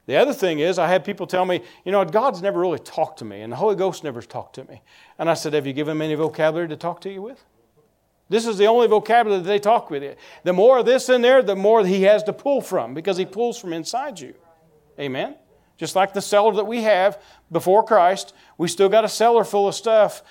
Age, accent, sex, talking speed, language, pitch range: 40-59, American, male, 255 wpm, English, 145-200 Hz